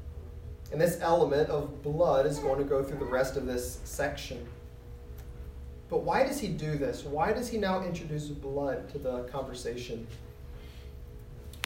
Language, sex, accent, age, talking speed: English, male, American, 30-49, 160 wpm